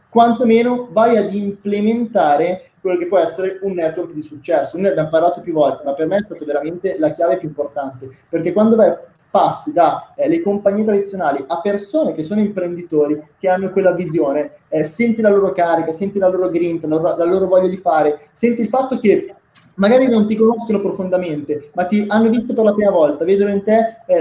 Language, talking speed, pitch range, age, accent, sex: Italian, 210 wpm, 165-220 Hz, 20-39, native, male